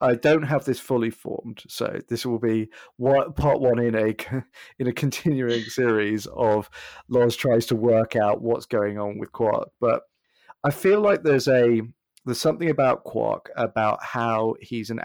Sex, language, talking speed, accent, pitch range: male, English, 170 wpm, British, 110-130 Hz